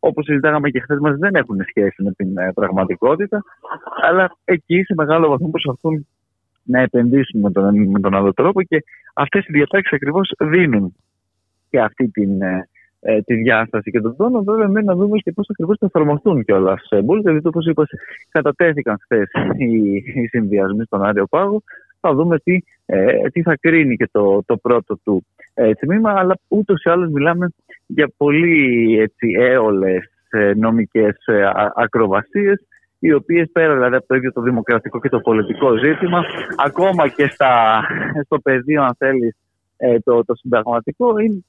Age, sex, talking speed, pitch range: 30-49, male, 160 wpm, 110-175 Hz